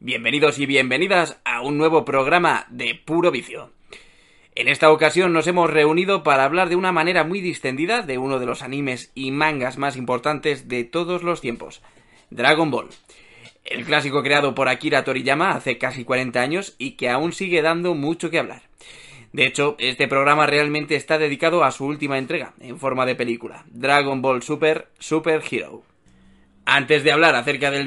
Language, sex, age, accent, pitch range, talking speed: Spanish, male, 20-39, Spanish, 130-160 Hz, 175 wpm